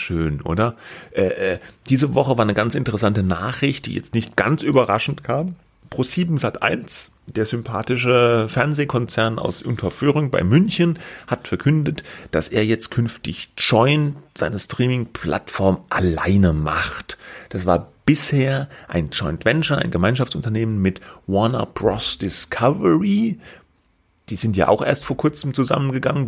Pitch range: 100-140 Hz